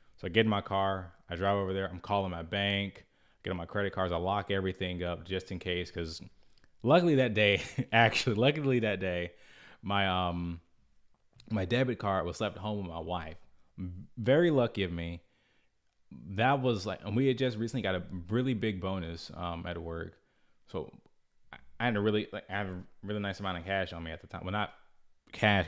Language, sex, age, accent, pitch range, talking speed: English, male, 20-39, American, 90-110 Hz, 200 wpm